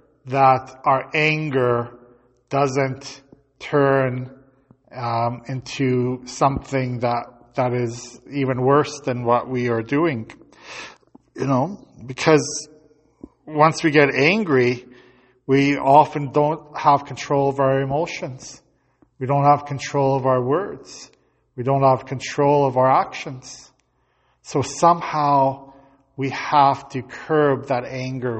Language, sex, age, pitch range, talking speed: English, male, 40-59, 125-145 Hz, 115 wpm